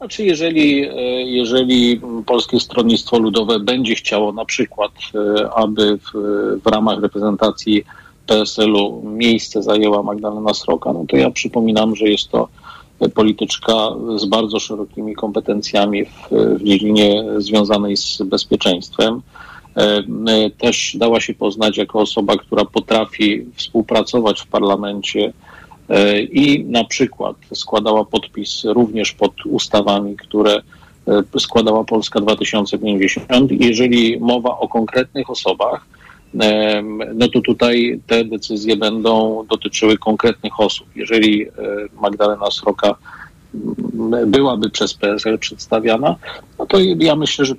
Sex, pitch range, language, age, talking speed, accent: male, 105-120 Hz, Polish, 40-59, 110 wpm, native